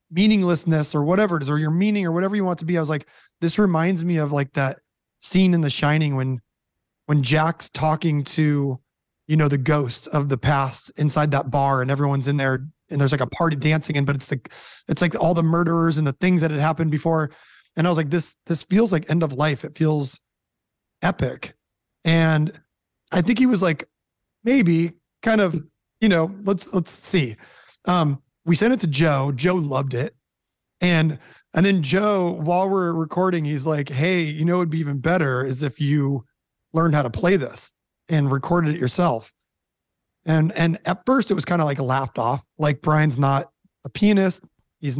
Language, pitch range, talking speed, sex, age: English, 145-175 Hz, 200 wpm, male, 30-49